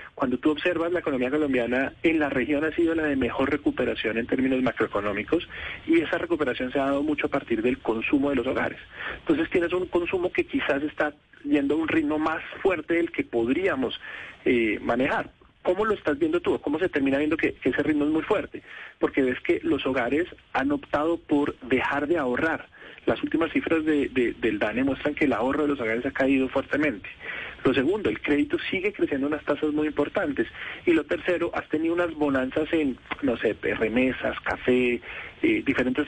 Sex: male